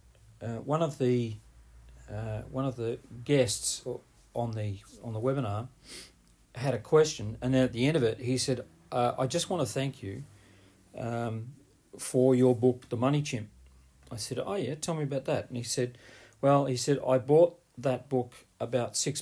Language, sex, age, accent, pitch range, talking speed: English, male, 40-59, Australian, 110-130 Hz, 185 wpm